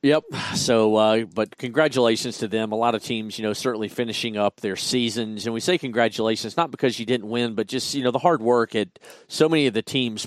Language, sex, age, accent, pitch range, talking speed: English, male, 40-59, American, 110-125 Hz, 235 wpm